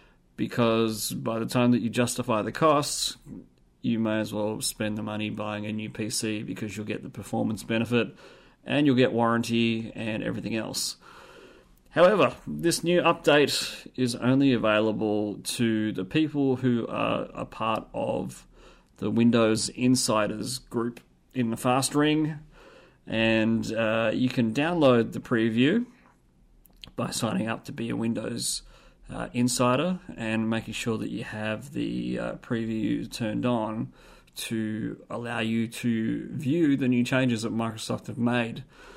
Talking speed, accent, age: 145 wpm, Australian, 30-49